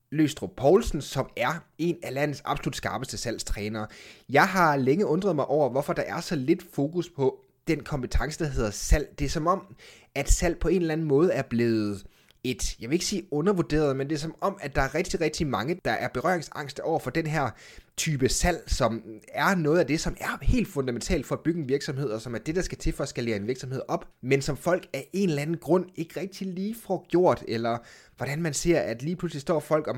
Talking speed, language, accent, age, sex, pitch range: 230 wpm, Danish, native, 30-49, male, 125-170 Hz